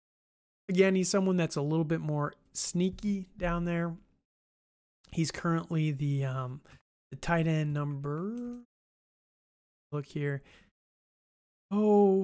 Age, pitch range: 20-39, 145-175 Hz